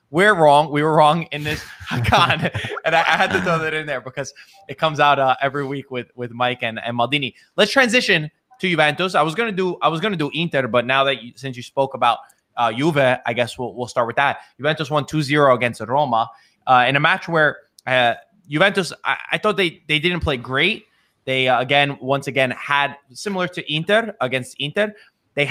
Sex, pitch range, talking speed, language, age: male, 130-170 Hz, 215 wpm, English, 20-39